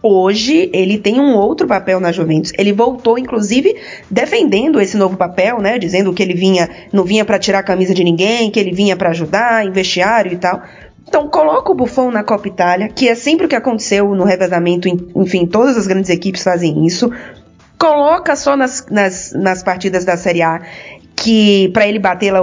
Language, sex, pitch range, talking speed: Portuguese, female, 185-250 Hz, 195 wpm